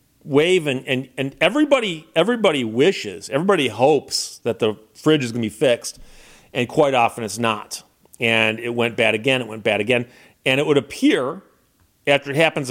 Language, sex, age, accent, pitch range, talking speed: English, male, 40-59, American, 130-175 Hz, 180 wpm